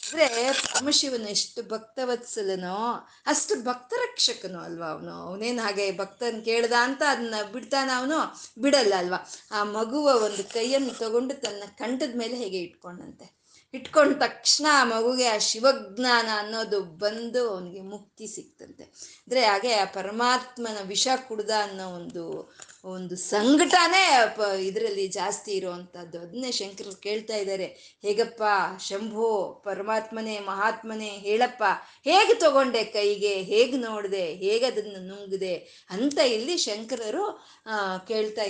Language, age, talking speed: Kannada, 20-39, 115 wpm